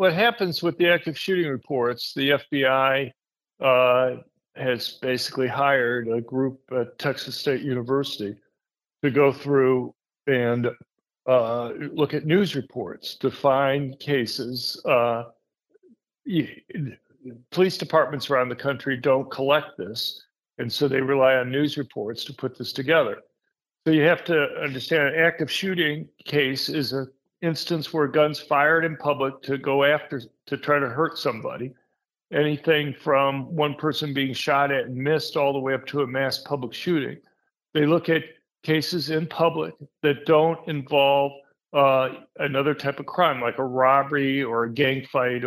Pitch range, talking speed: 130-150 Hz, 150 wpm